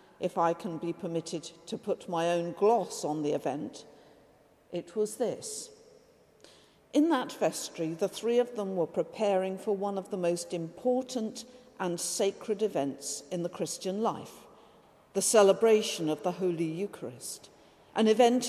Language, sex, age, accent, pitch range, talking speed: English, female, 50-69, British, 175-215 Hz, 150 wpm